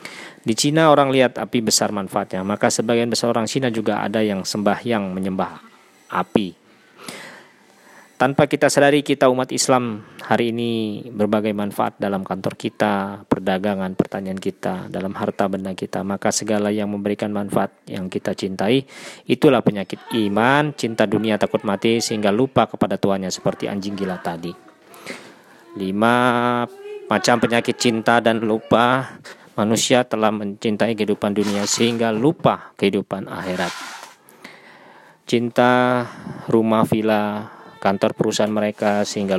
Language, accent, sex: Indonesian, native, male